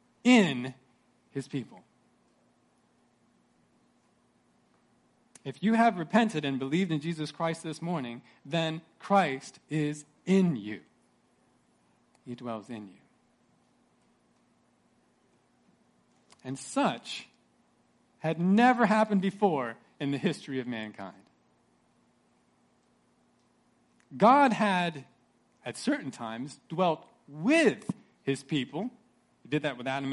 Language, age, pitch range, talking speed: English, 40-59, 140-215 Hz, 95 wpm